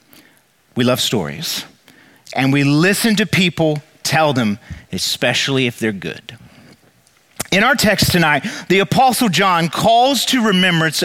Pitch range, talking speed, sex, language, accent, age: 150-210 Hz, 130 wpm, male, English, American, 40-59